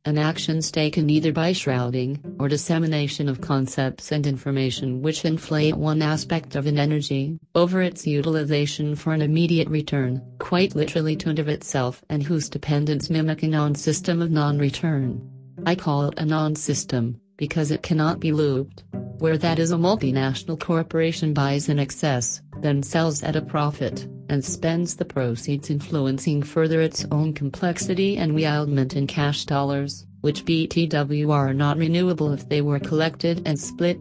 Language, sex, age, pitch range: English, female, 40-59, 140-160 Hz